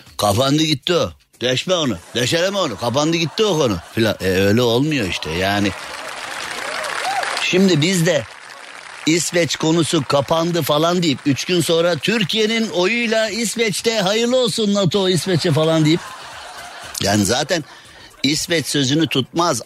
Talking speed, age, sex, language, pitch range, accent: 125 wpm, 60-79, male, Turkish, 140-180 Hz, native